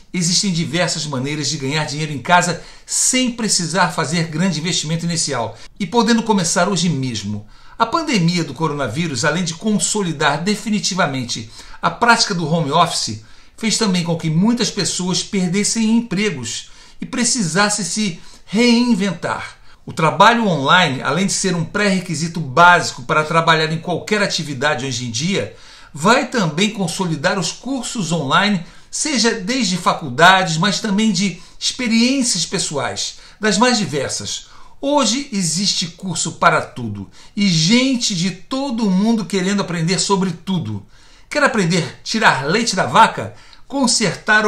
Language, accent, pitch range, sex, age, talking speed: Portuguese, Brazilian, 160-210 Hz, male, 60-79, 135 wpm